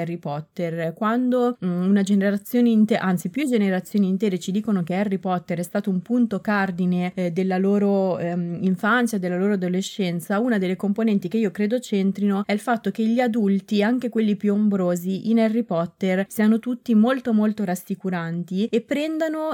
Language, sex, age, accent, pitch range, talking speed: Italian, female, 20-39, native, 180-220 Hz, 170 wpm